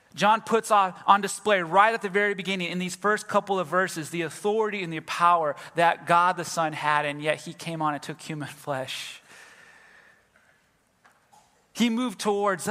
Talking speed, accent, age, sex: 175 wpm, American, 30-49, male